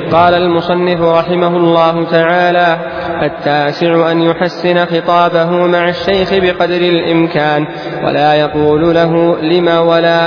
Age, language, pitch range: 20-39, Arabic, 165-185 Hz